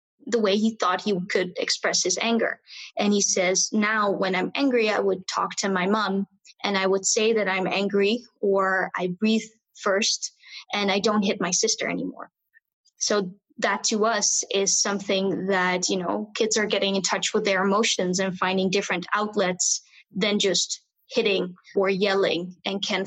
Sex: female